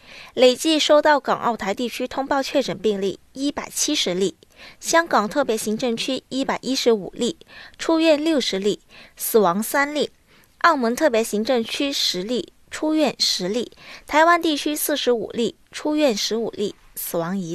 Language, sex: Chinese, female